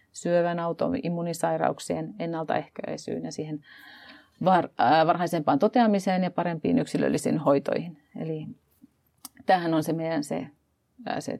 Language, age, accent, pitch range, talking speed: Finnish, 40-59, native, 165-215 Hz, 95 wpm